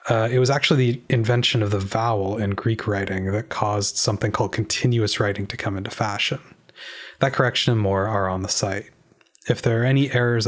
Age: 20-39